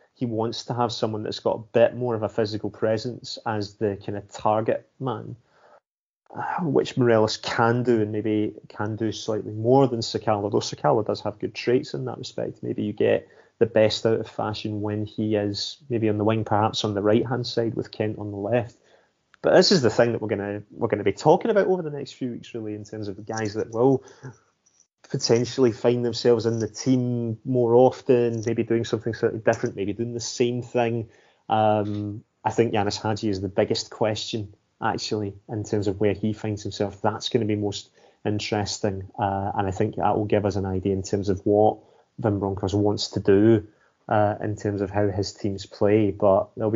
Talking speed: 210 wpm